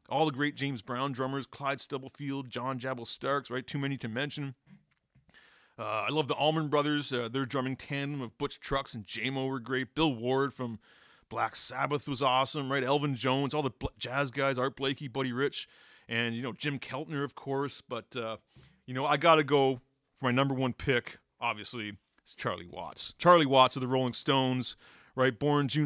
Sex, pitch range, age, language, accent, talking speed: male, 115-140 Hz, 40-59, English, American, 195 wpm